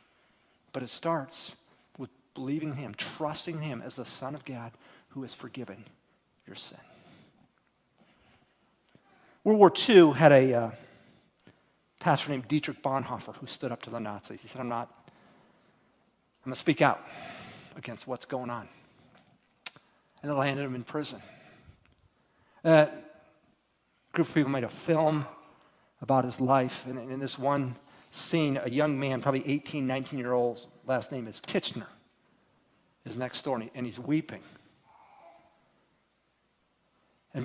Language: English